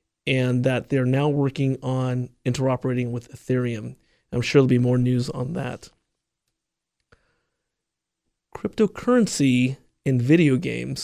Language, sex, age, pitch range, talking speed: English, male, 30-49, 125-140 Hz, 115 wpm